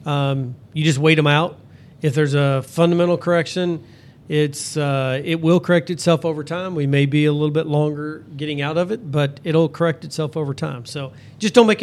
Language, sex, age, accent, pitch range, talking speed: English, male, 40-59, American, 145-170 Hz, 205 wpm